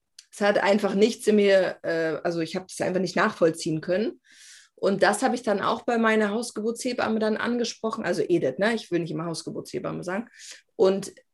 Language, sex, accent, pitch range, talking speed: German, female, German, 180-235 Hz, 185 wpm